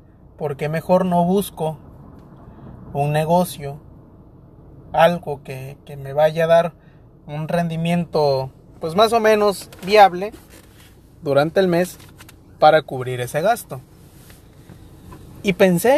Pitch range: 135-170 Hz